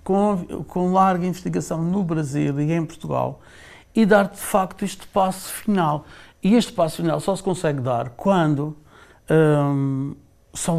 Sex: male